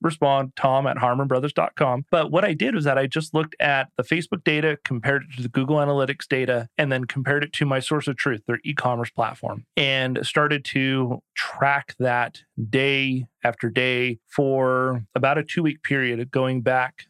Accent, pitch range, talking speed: American, 125-150 Hz, 185 wpm